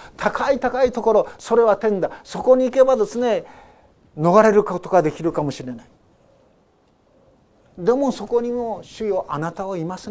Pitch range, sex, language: 190-230 Hz, male, Japanese